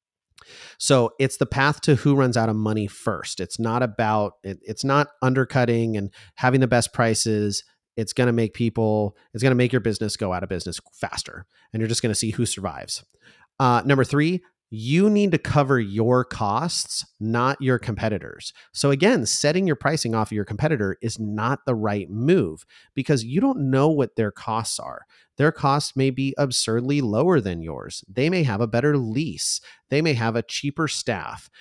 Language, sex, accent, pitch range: English, male, American, 110-140 Hz